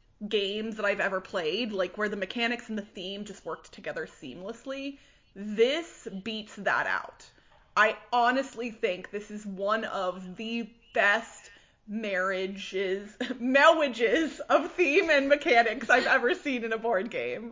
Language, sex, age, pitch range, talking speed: English, female, 30-49, 220-295 Hz, 145 wpm